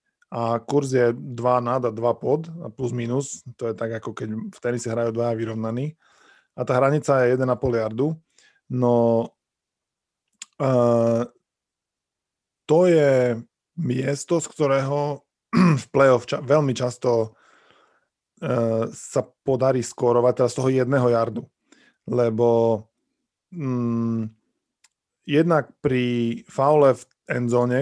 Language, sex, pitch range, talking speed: Slovak, male, 115-130 Hz, 120 wpm